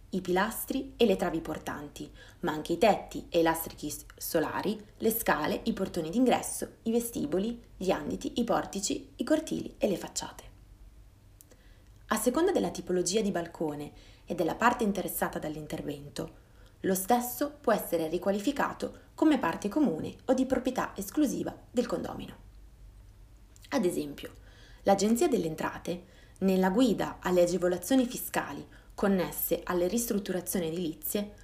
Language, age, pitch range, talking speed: Italian, 20-39, 160-240 Hz, 130 wpm